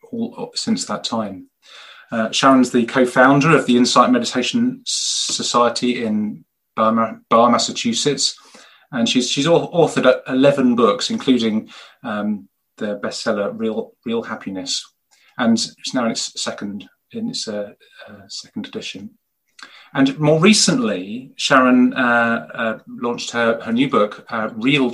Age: 30-49